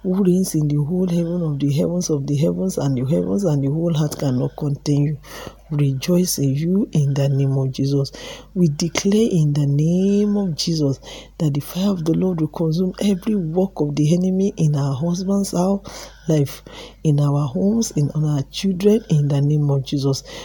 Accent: Nigerian